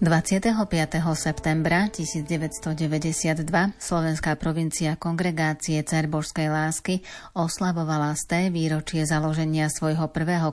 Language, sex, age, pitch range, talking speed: Slovak, female, 30-49, 155-170 Hz, 80 wpm